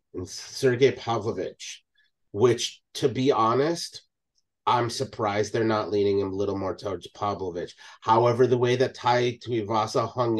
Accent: American